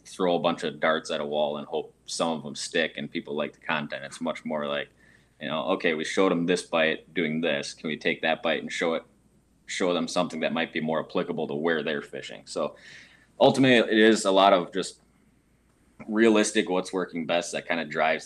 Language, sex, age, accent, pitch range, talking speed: English, male, 20-39, American, 80-95 Hz, 225 wpm